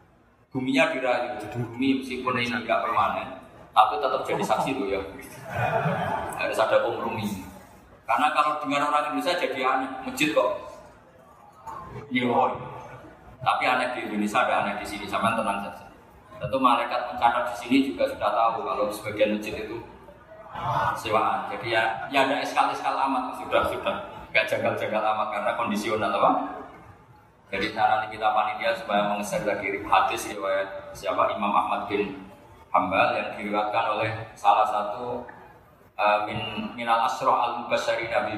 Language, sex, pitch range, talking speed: Malay, male, 105-130 Hz, 140 wpm